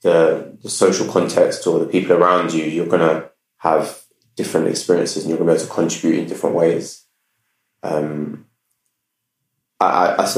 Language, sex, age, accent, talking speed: English, male, 20-39, British, 175 wpm